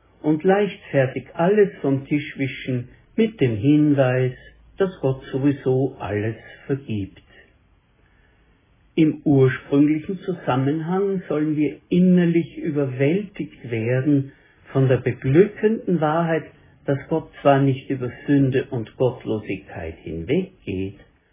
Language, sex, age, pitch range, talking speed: German, male, 60-79, 120-155 Hz, 100 wpm